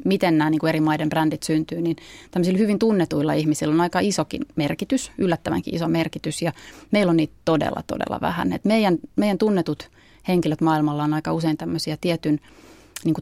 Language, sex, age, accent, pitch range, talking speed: Finnish, female, 30-49, native, 155-180 Hz, 170 wpm